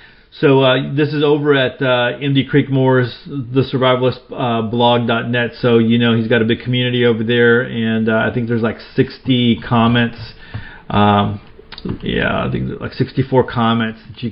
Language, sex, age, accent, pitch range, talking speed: English, male, 40-59, American, 115-140 Hz, 180 wpm